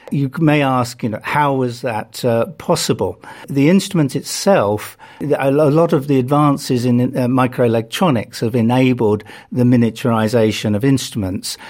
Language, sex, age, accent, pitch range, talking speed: English, male, 50-69, British, 115-140 Hz, 140 wpm